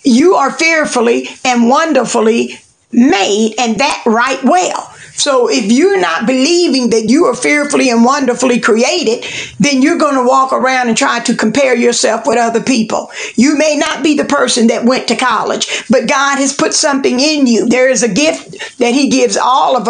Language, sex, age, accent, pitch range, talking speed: English, female, 50-69, American, 235-290 Hz, 185 wpm